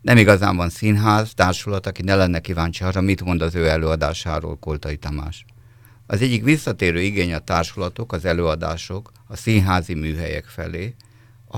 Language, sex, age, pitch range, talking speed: Hungarian, male, 50-69, 85-115 Hz, 155 wpm